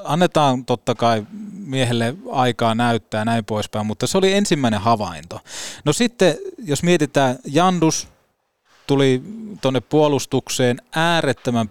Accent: native